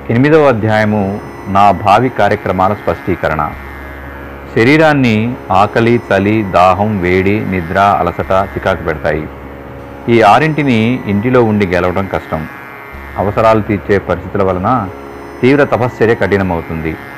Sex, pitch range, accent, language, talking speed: male, 90-110 Hz, native, Telugu, 100 wpm